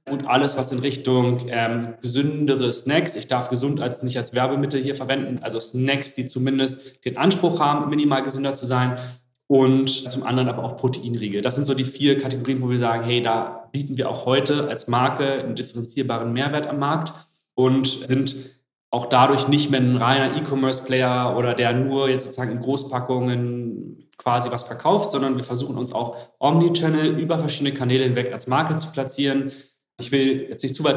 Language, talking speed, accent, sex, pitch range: German, 185 wpm, German, male, 120-140 Hz